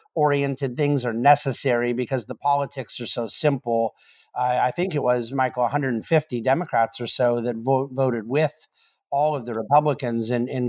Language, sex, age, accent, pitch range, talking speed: English, male, 50-69, American, 120-140 Hz, 165 wpm